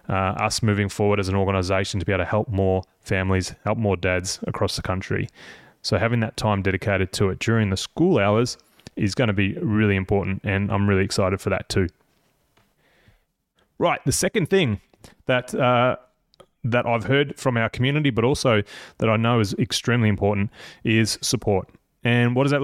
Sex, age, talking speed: male, 20-39, 185 wpm